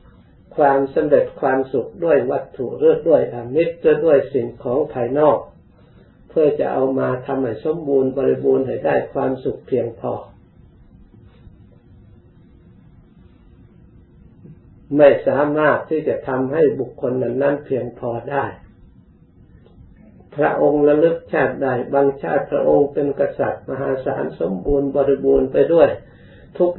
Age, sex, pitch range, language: 50-69, male, 125-150 Hz, Thai